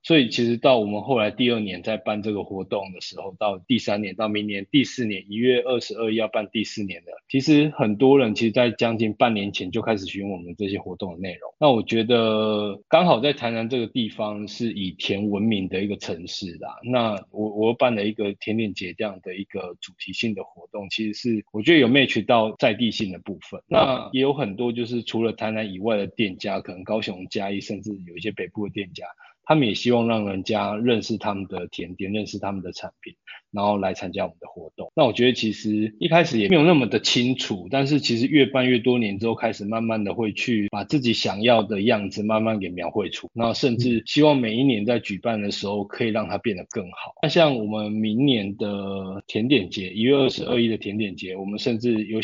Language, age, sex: Chinese, 20-39, male